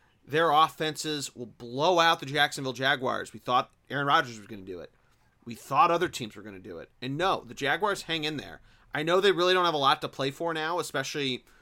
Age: 30-49